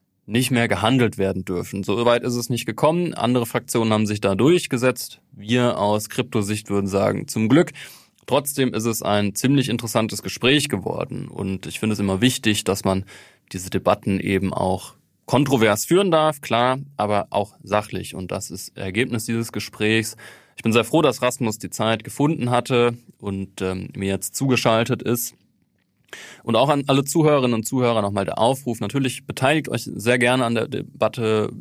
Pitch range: 95-120 Hz